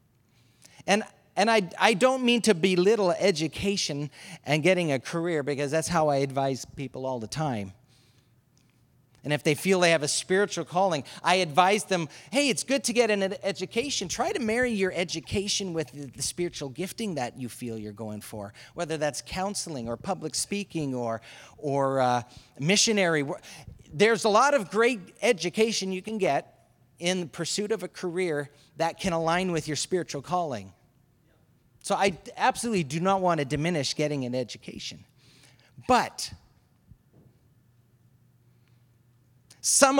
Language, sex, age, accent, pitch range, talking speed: English, male, 40-59, American, 125-200 Hz, 150 wpm